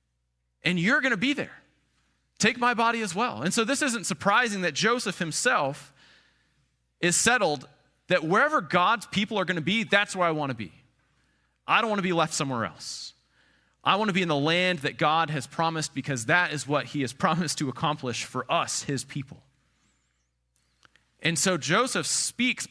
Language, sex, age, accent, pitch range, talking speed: English, male, 30-49, American, 115-180 Hz, 190 wpm